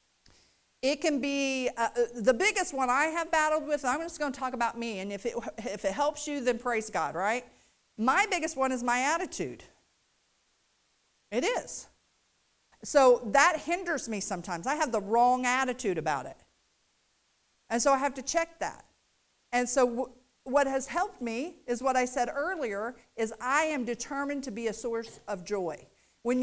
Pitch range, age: 230-285 Hz, 50-69